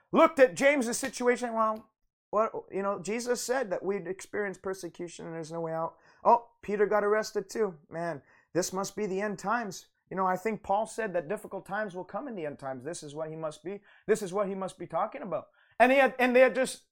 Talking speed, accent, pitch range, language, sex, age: 240 wpm, American, 205-285 Hz, English, male, 30-49